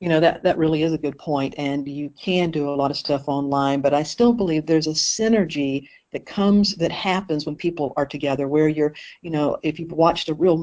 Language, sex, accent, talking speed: English, female, American, 235 wpm